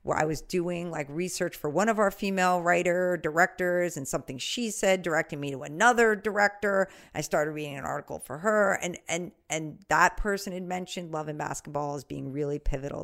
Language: English